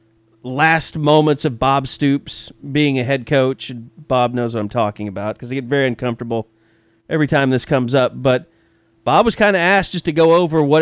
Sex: male